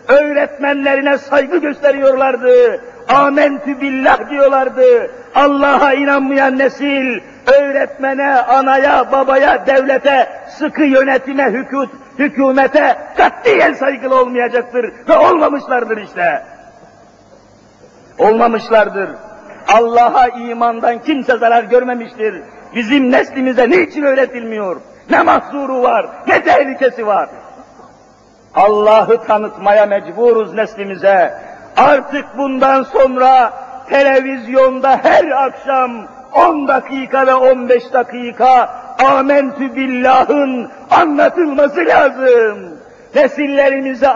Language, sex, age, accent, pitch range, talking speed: Turkish, male, 50-69, native, 245-280 Hz, 80 wpm